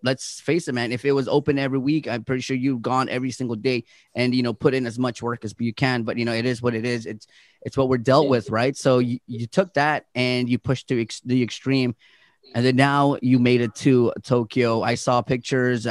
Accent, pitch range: American, 125-155 Hz